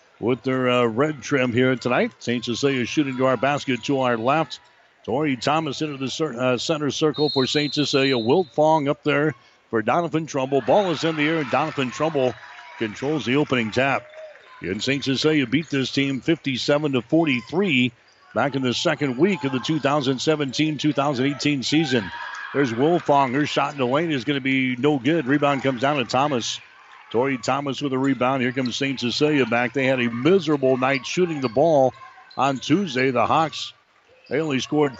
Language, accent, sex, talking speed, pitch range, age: English, American, male, 185 wpm, 125-150 Hz, 60-79